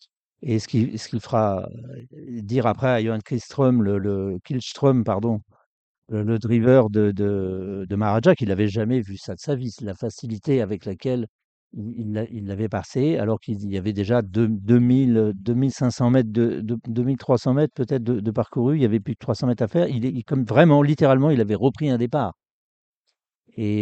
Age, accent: 50-69, French